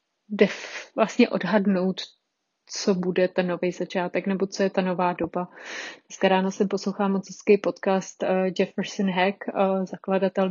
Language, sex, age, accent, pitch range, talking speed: Czech, female, 30-49, native, 185-205 Hz, 130 wpm